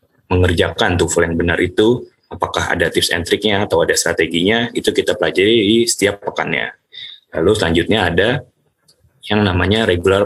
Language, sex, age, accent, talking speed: Indonesian, male, 20-39, native, 145 wpm